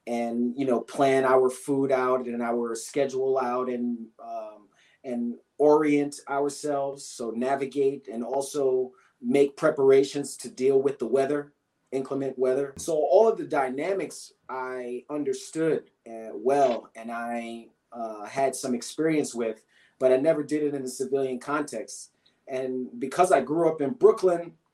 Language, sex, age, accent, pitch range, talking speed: English, male, 30-49, American, 125-155 Hz, 150 wpm